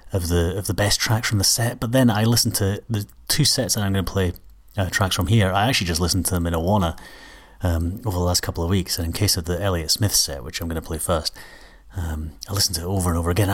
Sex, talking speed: male, 285 wpm